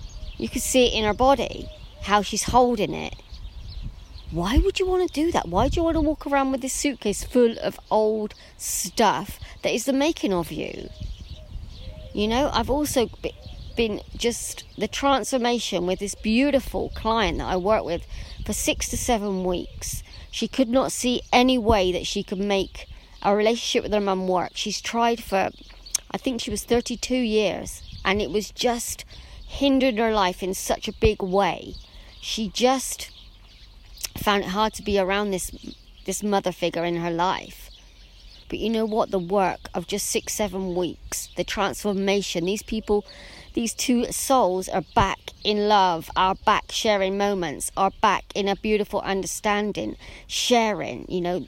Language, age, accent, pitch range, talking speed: English, 30-49, British, 185-235 Hz, 170 wpm